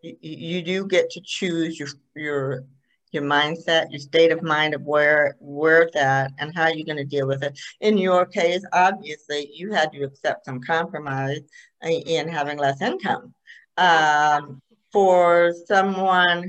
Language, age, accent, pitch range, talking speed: English, 60-79, American, 135-165 Hz, 155 wpm